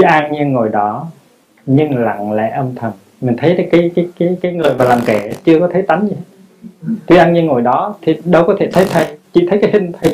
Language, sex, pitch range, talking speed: Vietnamese, male, 125-175 Hz, 250 wpm